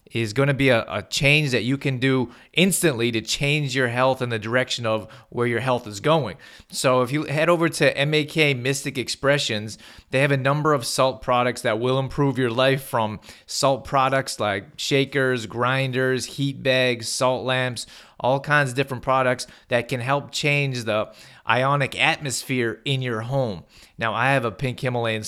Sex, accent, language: male, American, English